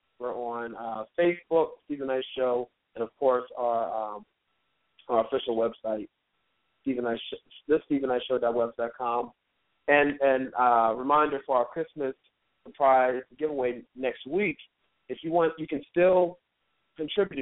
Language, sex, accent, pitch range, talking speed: English, male, American, 120-140 Hz, 140 wpm